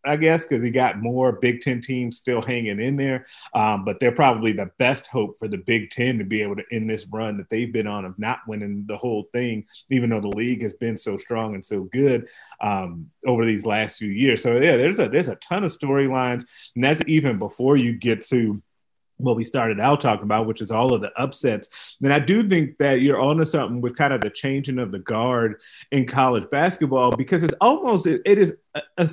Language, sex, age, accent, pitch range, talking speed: English, male, 30-49, American, 115-145 Hz, 230 wpm